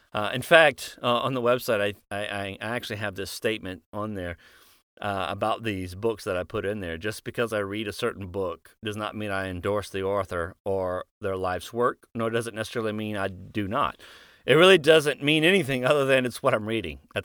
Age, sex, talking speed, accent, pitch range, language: 40-59, male, 220 wpm, American, 95-125 Hz, English